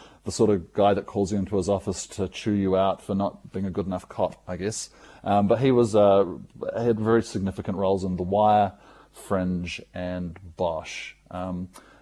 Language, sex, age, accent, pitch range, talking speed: English, male, 30-49, Australian, 90-110 Hz, 200 wpm